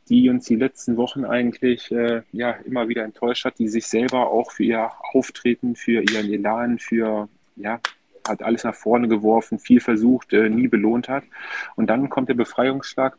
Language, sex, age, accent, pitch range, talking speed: German, male, 30-49, German, 115-130 Hz, 180 wpm